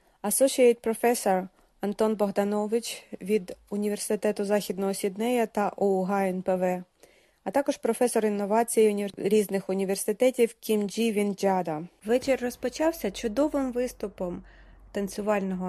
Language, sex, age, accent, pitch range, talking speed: Ukrainian, female, 30-49, native, 195-245 Hz, 95 wpm